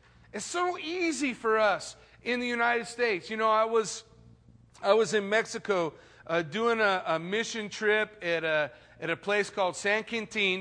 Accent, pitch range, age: American, 170-220 Hz, 40-59